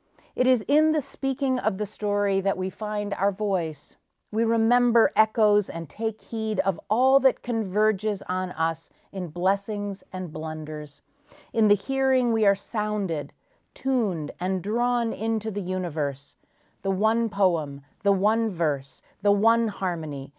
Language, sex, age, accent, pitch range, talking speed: English, female, 40-59, American, 180-225 Hz, 145 wpm